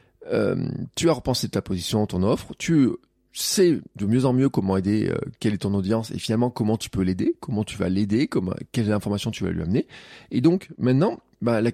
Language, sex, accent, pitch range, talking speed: French, male, French, 100-130 Hz, 215 wpm